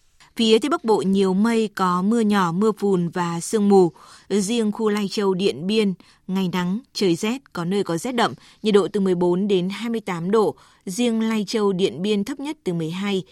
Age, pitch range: 20-39, 180-215 Hz